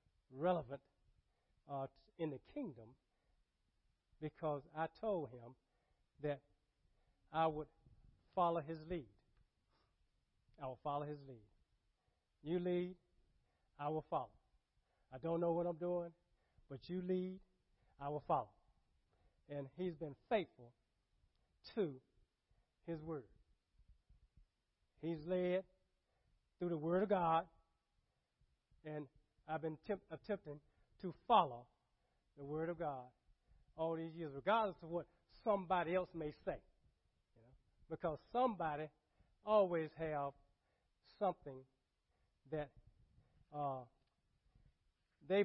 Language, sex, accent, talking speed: English, male, American, 110 wpm